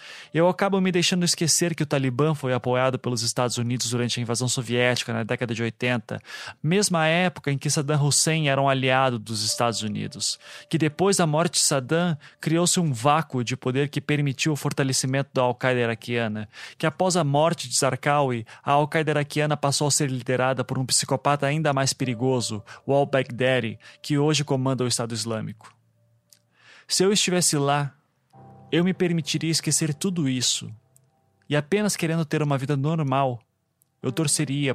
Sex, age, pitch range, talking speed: male, 20-39, 125-150 Hz, 170 wpm